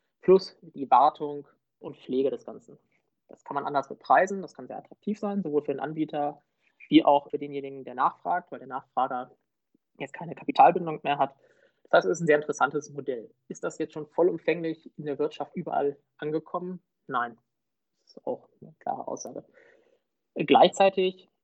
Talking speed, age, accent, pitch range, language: 170 wpm, 20-39, German, 145-185 Hz, German